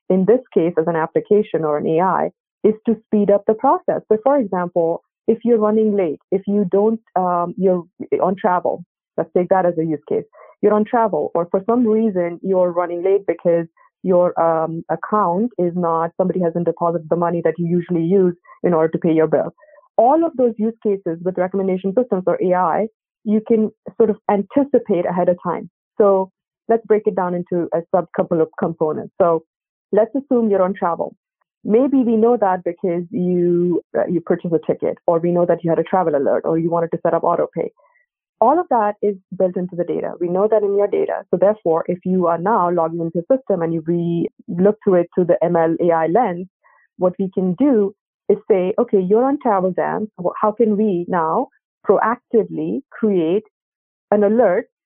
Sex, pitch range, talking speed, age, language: female, 170-220 Hz, 200 wpm, 30-49, English